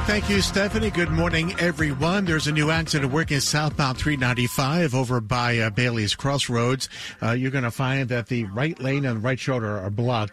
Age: 50-69